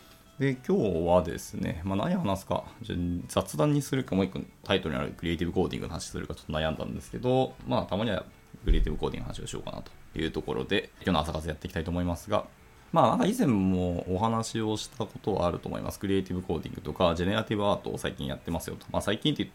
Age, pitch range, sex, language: 20-39, 85-120 Hz, male, Japanese